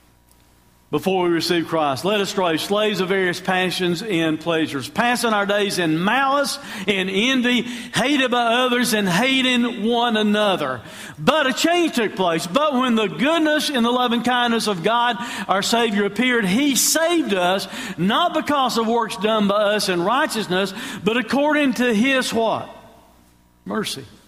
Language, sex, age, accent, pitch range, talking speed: English, male, 50-69, American, 195-250 Hz, 155 wpm